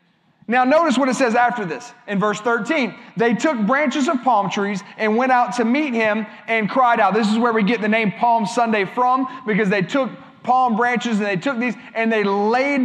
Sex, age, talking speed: male, 30-49, 220 wpm